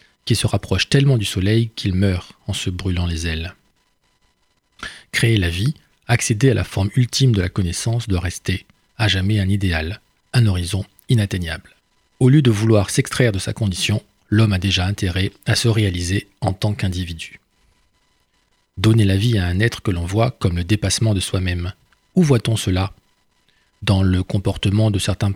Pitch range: 95-110 Hz